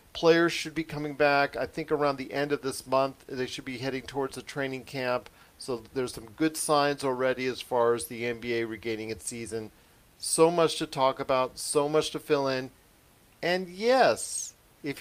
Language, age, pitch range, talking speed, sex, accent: English, 40-59, 135-200 Hz, 190 wpm, male, American